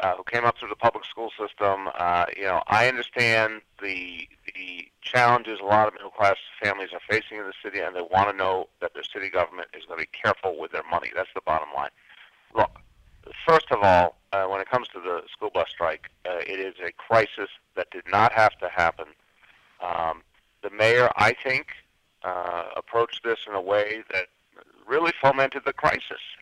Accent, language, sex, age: American, English, male, 40-59